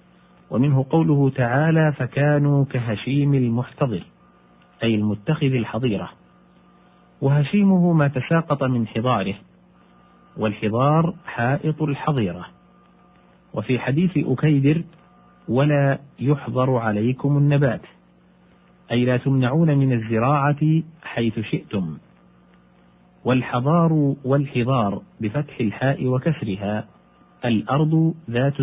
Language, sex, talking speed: Arabic, male, 80 wpm